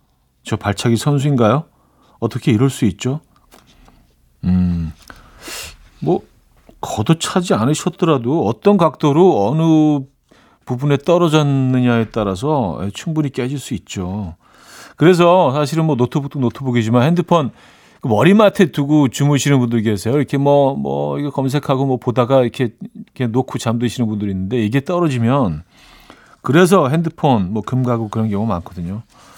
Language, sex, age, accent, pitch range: Korean, male, 40-59, native, 110-150 Hz